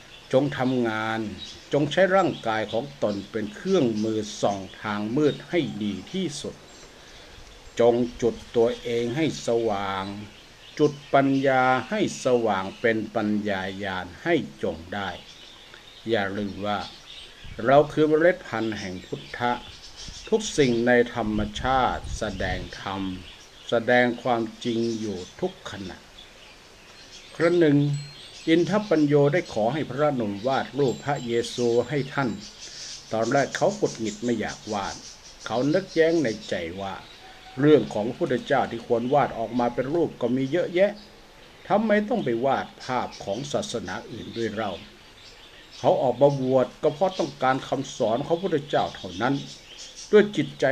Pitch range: 105-145 Hz